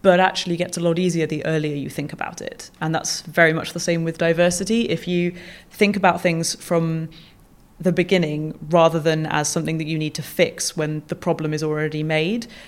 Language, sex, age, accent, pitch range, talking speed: English, female, 20-39, British, 155-175 Hz, 205 wpm